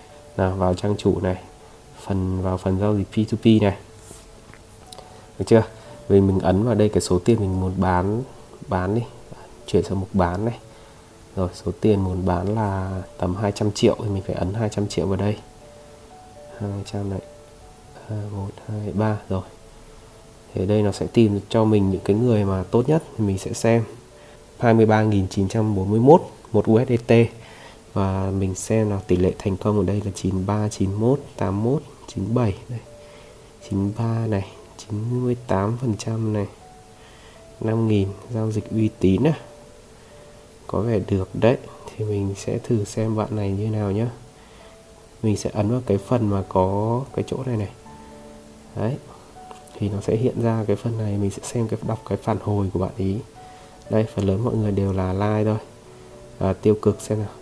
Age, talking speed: 20-39, 170 wpm